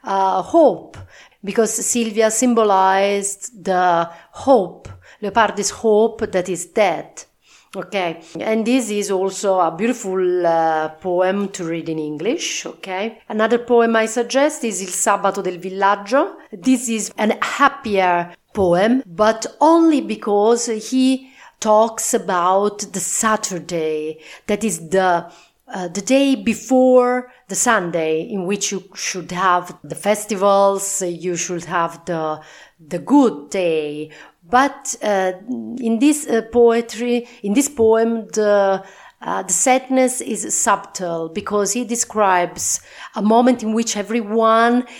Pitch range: 185-235 Hz